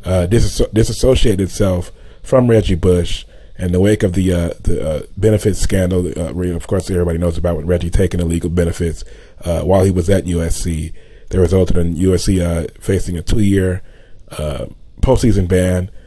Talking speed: 165 wpm